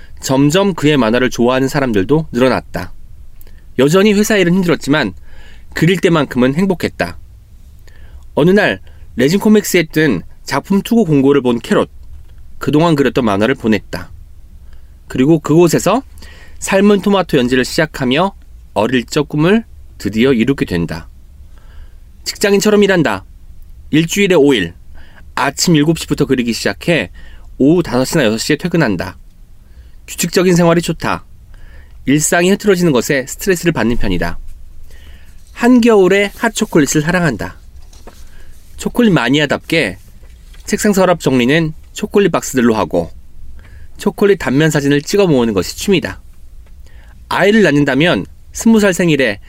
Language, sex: Korean, male